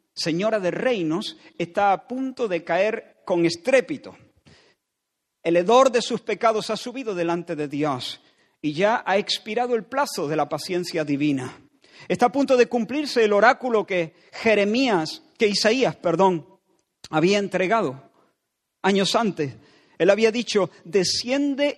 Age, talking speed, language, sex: 50-69, 140 wpm, Spanish, male